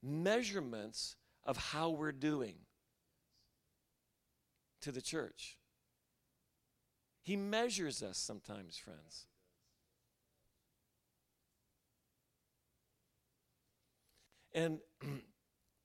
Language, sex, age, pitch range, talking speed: English, male, 50-69, 120-155 Hz, 55 wpm